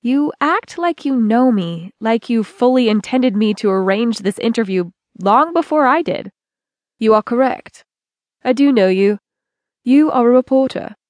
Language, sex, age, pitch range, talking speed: English, female, 20-39, 205-270 Hz, 160 wpm